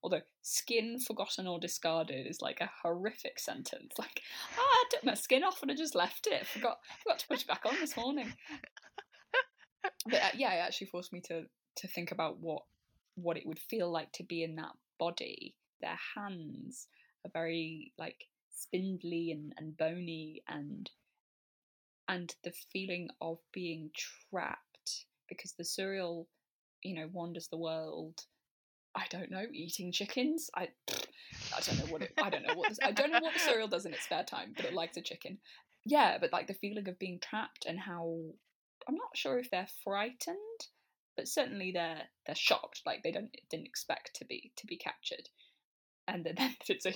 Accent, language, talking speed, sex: British, English, 190 wpm, female